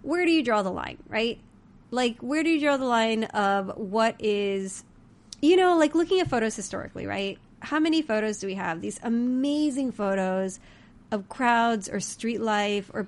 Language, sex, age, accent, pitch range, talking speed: English, female, 30-49, American, 190-235 Hz, 185 wpm